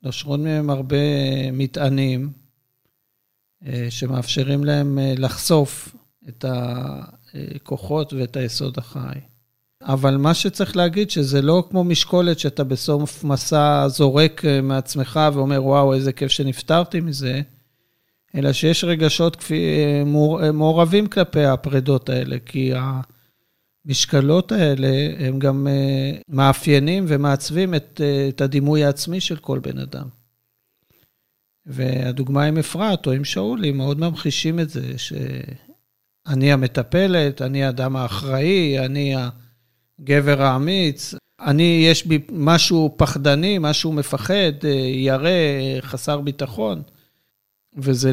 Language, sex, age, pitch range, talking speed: Hebrew, male, 50-69, 130-155 Hz, 105 wpm